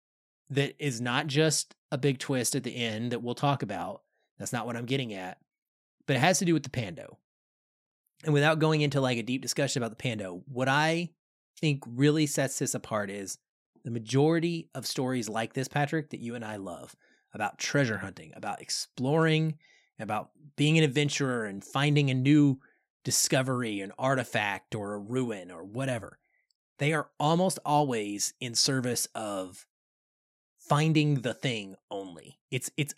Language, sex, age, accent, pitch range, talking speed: English, male, 30-49, American, 120-150 Hz, 170 wpm